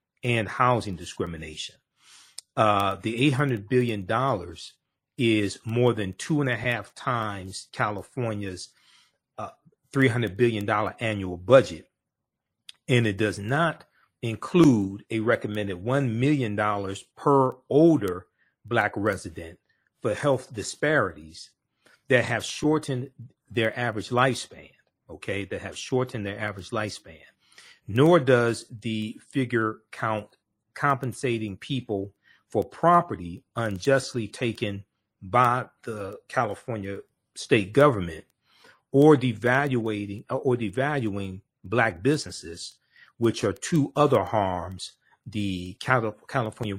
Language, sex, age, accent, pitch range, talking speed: English, male, 40-59, American, 100-130 Hz, 100 wpm